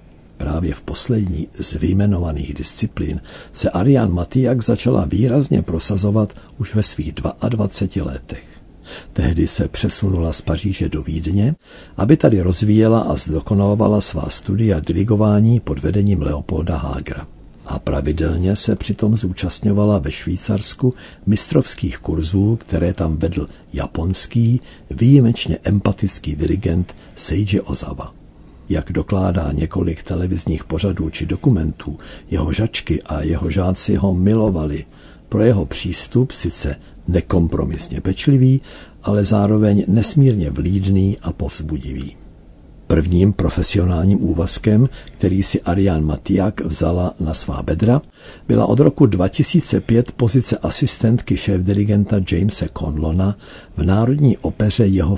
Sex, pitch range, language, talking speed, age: male, 80-105 Hz, Czech, 110 wpm, 60-79